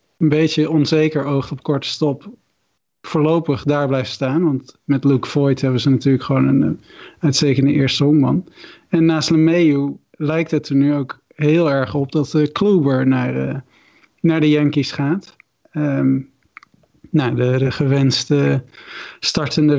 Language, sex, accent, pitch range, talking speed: Dutch, male, Dutch, 135-155 Hz, 145 wpm